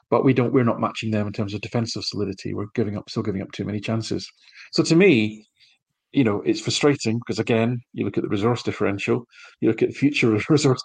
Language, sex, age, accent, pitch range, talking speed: English, male, 40-59, British, 105-125 Hz, 230 wpm